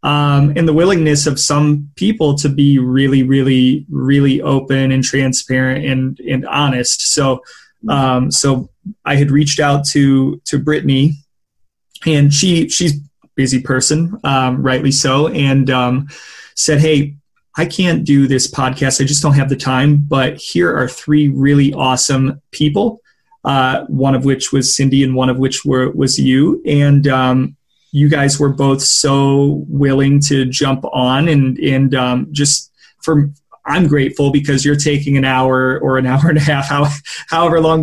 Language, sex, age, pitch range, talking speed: English, male, 20-39, 130-150 Hz, 160 wpm